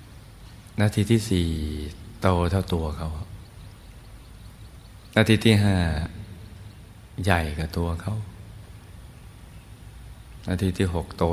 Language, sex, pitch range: Thai, male, 85-105 Hz